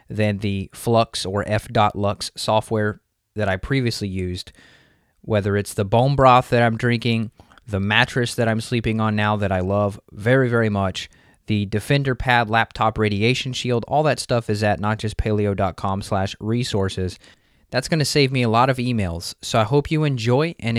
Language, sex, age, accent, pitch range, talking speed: English, male, 20-39, American, 100-120 Hz, 175 wpm